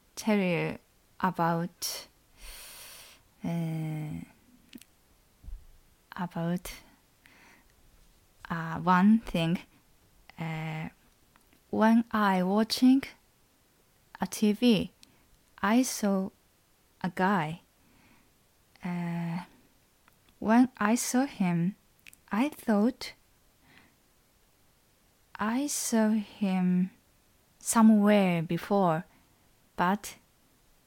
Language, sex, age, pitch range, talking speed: English, female, 20-39, 170-220 Hz, 60 wpm